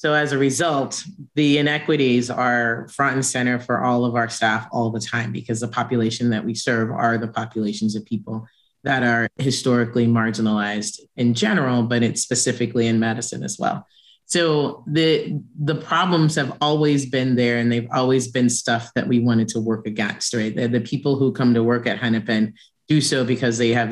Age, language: 30-49, English